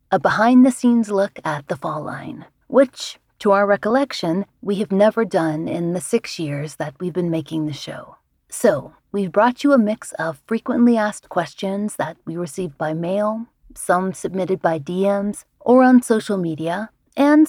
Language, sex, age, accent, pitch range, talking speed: English, female, 30-49, American, 170-230 Hz, 170 wpm